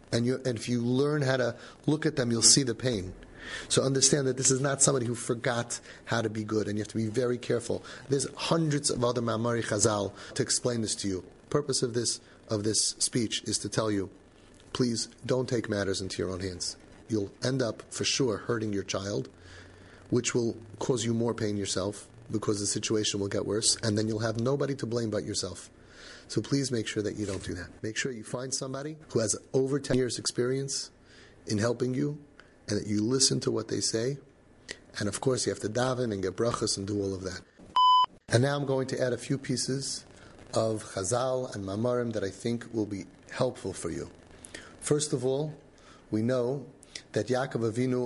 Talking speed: 210 wpm